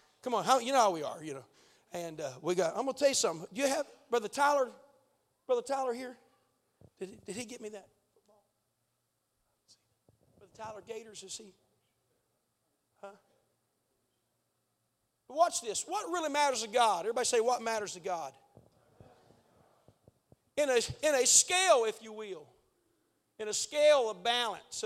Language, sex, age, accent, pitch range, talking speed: English, male, 40-59, American, 210-305 Hz, 165 wpm